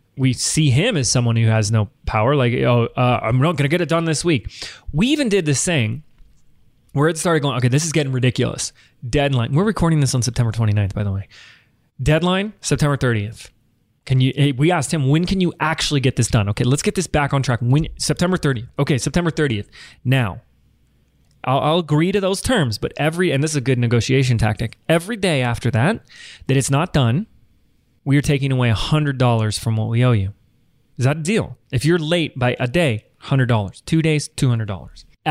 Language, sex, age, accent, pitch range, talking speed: English, male, 20-39, American, 120-160 Hz, 205 wpm